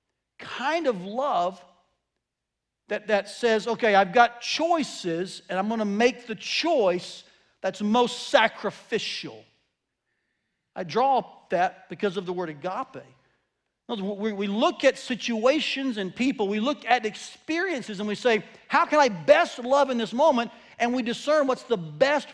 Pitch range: 180-245 Hz